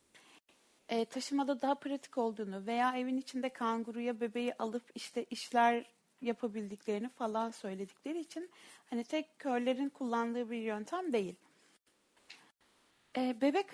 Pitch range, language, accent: 230-275 Hz, Turkish, native